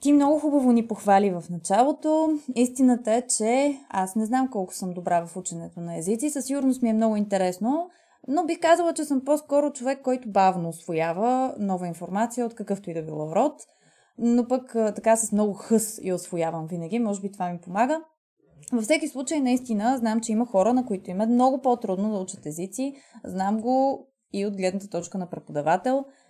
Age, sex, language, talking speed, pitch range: 20-39, female, Bulgarian, 185 wpm, 185-255 Hz